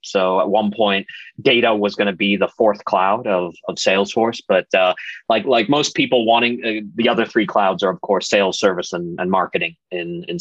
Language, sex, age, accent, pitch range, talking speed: English, male, 30-49, American, 95-110 Hz, 215 wpm